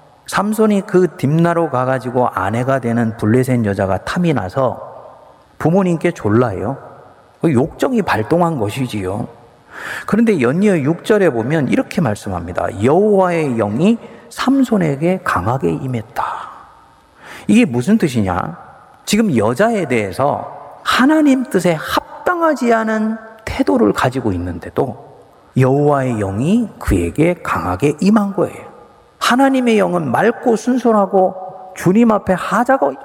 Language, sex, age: Korean, male, 40-59